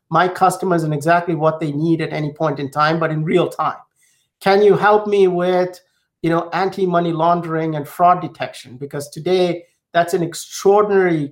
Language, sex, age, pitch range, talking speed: English, male, 50-69, 160-185 Hz, 175 wpm